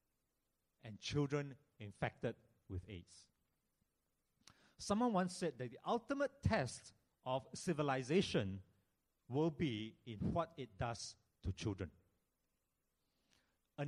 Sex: male